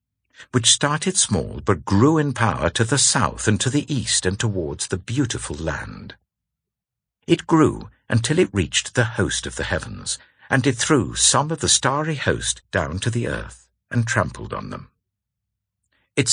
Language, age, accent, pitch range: English, 60-79, British, 95-125 Hz